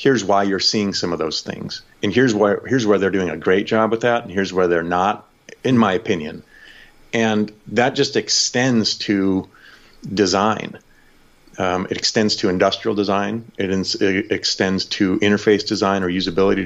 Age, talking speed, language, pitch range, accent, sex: 40-59, 175 wpm, English, 90-110 Hz, American, male